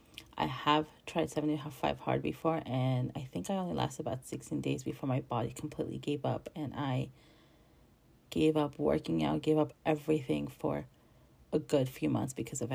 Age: 30-49